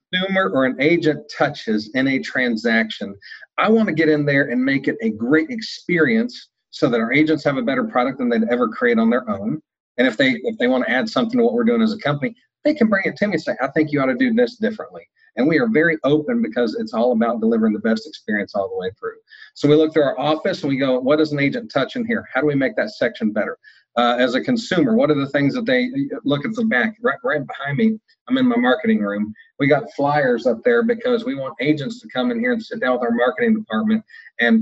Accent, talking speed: American, 260 wpm